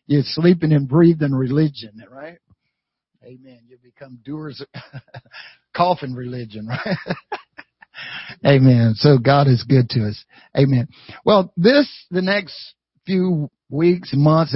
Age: 50-69